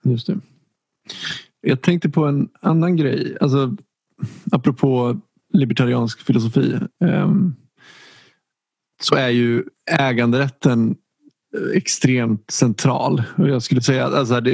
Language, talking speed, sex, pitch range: Swedish, 90 wpm, male, 120-150 Hz